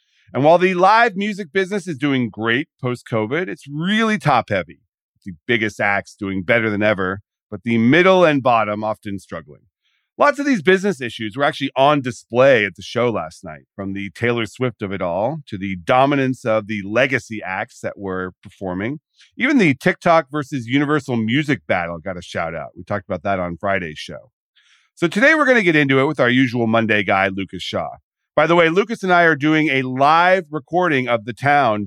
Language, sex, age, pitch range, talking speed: English, male, 40-59, 105-155 Hz, 200 wpm